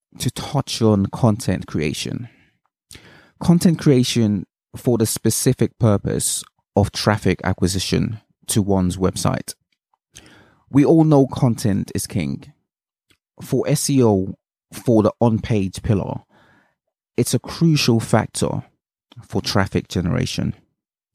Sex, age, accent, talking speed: male, 30-49, British, 100 wpm